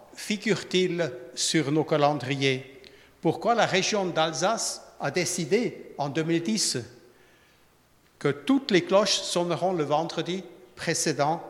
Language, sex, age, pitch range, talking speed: French, male, 60-79, 145-185 Hz, 105 wpm